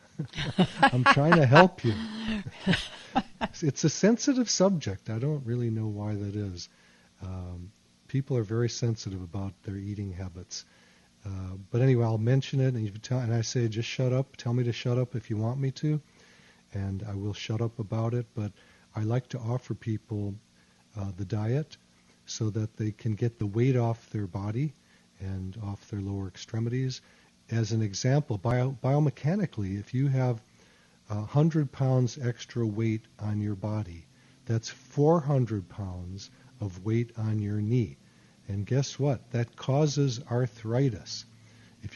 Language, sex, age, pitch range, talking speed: English, male, 50-69, 105-130 Hz, 155 wpm